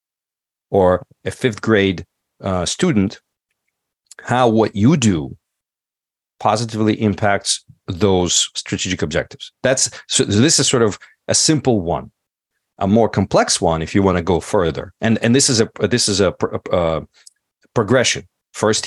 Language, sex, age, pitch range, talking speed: English, male, 40-59, 95-120 Hz, 145 wpm